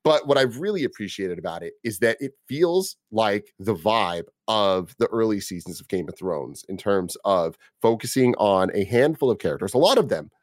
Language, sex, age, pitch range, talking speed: English, male, 30-49, 95-125 Hz, 200 wpm